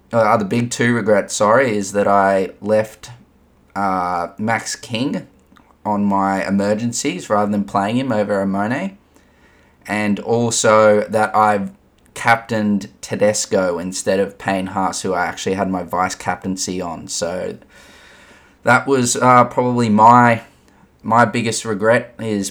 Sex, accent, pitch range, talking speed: male, Australian, 100-115 Hz, 130 wpm